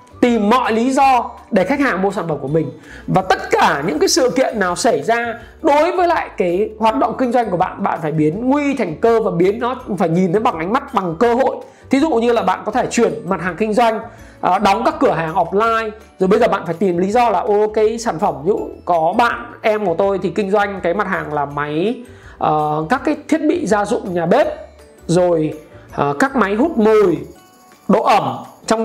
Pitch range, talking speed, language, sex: 190-250 Hz, 225 wpm, Vietnamese, male